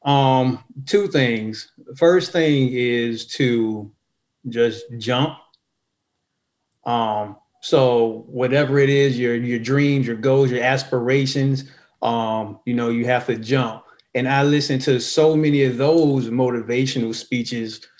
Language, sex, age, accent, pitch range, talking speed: English, male, 30-49, American, 120-140 Hz, 125 wpm